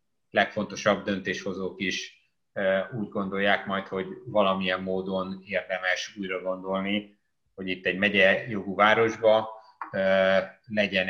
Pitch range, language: 95-105 Hz, Hungarian